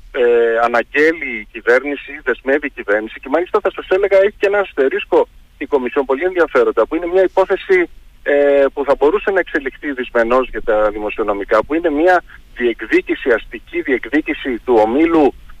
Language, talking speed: Greek, 160 wpm